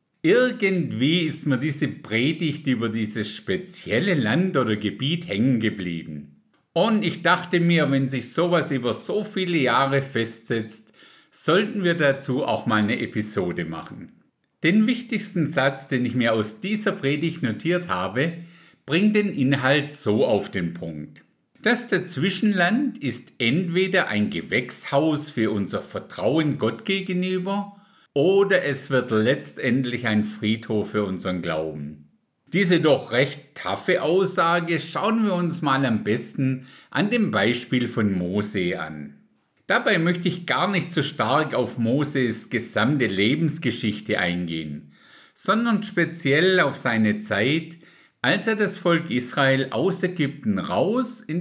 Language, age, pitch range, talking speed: German, 50-69, 110-180 Hz, 135 wpm